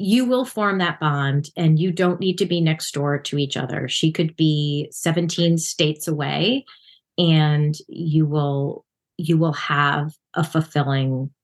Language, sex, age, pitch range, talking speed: English, female, 30-49, 155-185 Hz, 155 wpm